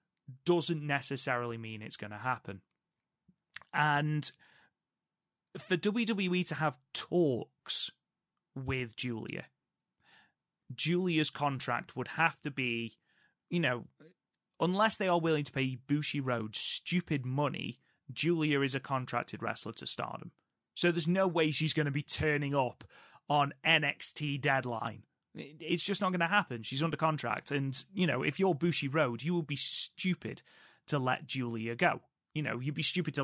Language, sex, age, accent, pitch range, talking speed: English, male, 30-49, British, 130-170 Hz, 150 wpm